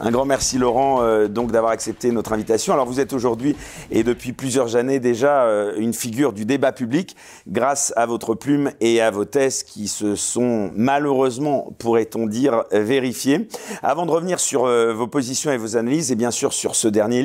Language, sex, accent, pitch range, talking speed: French, male, French, 115-135 Hz, 195 wpm